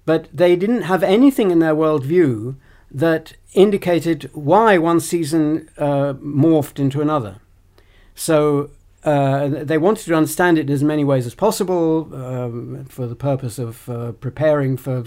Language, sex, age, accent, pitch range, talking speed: English, male, 60-79, British, 125-165 Hz, 150 wpm